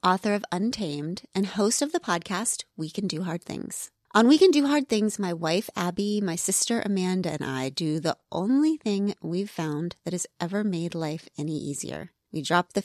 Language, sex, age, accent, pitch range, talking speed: English, female, 30-49, American, 165-220 Hz, 200 wpm